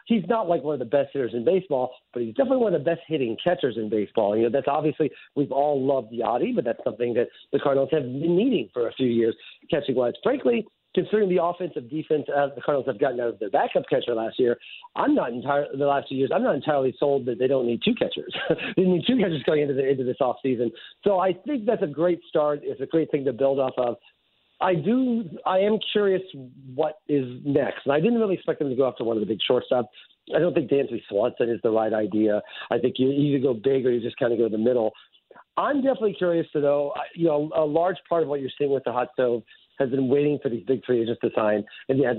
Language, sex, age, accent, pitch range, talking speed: English, male, 50-69, American, 125-170 Hz, 255 wpm